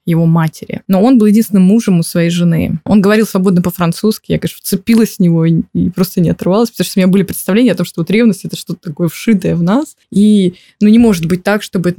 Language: Russian